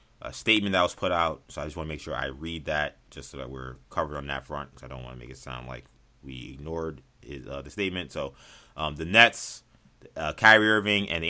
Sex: male